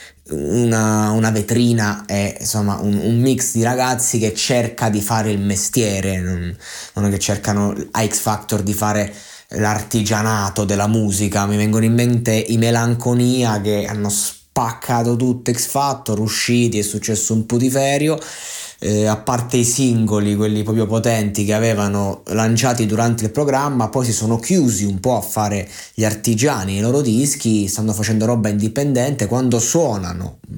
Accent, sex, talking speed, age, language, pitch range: native, male, 155 wpm, 20-39, Italian, 105-125 Hz